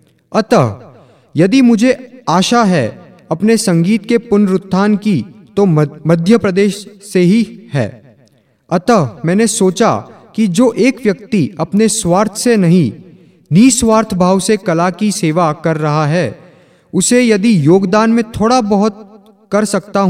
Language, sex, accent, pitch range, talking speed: Hindi, male, native, 160-215 Hz, 130 wpm